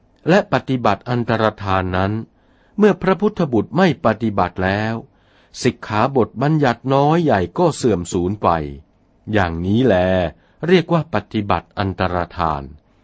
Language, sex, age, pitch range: Thai, male, 60-79, 95-140 Hz